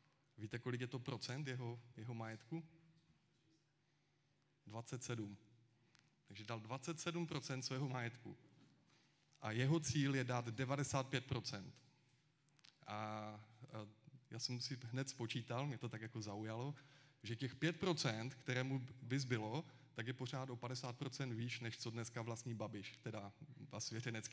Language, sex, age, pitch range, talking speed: Czech, male, 20-39, 115-140 Hz, 125 wpm